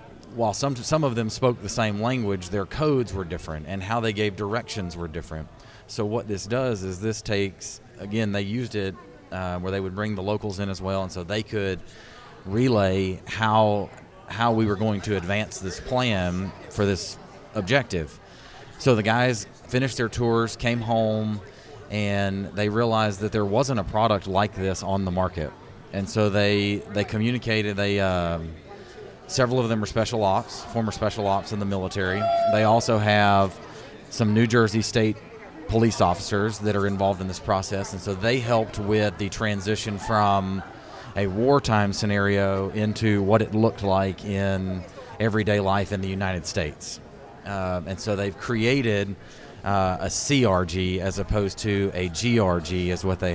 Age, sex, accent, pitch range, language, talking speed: 30-49, male, American, 95-115 Hz, English, 170 wpm